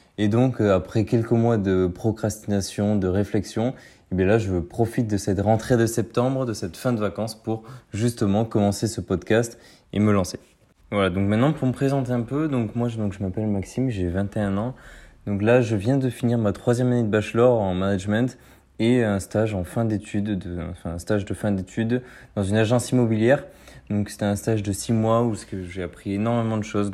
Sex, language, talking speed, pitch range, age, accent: male, English, 205 wpm, 100-120 Hz, 20-39, French